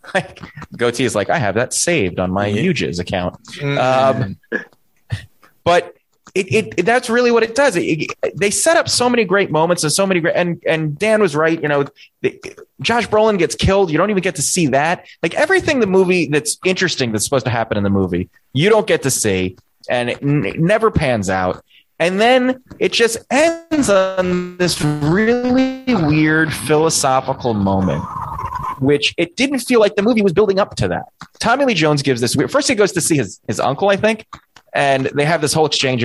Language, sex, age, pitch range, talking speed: English, male, 20-39, 125-200 Hz, 200 wpm